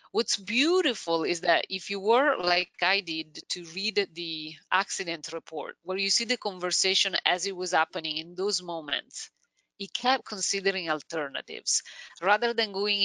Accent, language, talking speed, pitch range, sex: Italian, English, 155 wpm, 170-225 Hz, female